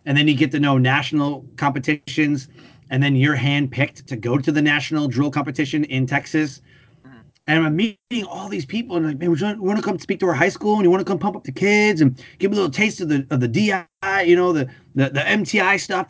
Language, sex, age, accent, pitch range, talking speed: English, male, 30-49, American, 135-170 Hz, 250 wpm